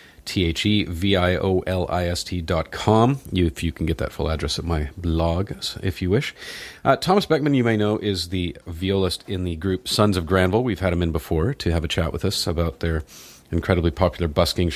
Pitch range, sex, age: 85-105 Hz, male, 40-59